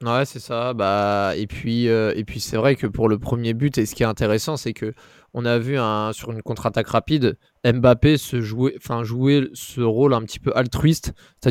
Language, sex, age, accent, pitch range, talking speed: French, male, 20-39, French, 120-150 Hz, 235 wpm